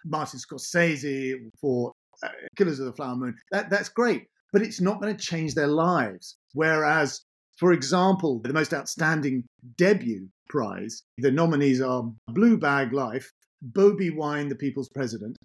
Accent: British